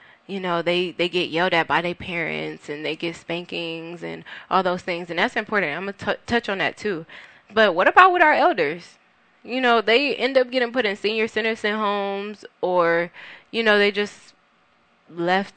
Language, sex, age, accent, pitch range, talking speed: English, female, 20-39, American, 170-205 Hz, 200 wpm